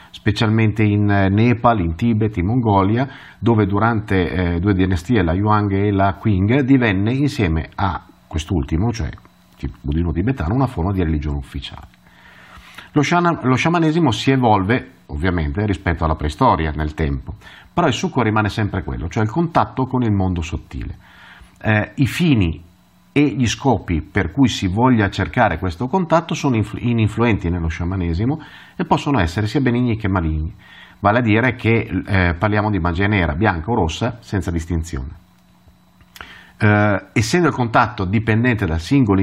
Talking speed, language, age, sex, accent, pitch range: 155 wpm, Italian, 50-69, male, native, 85-120 Hz